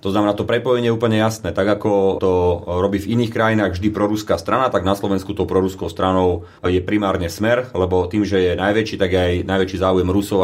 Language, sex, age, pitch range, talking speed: Slovak, male, 30-49, 95-105 Hz, 205 wpm